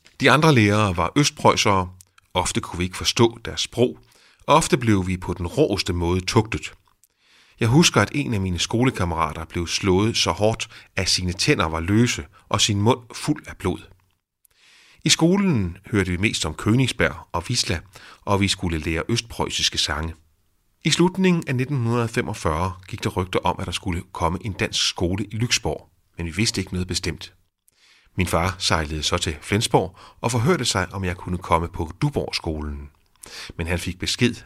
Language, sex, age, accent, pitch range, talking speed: Danish, male, 30-49, native, 85-110 Hz, 170 wpm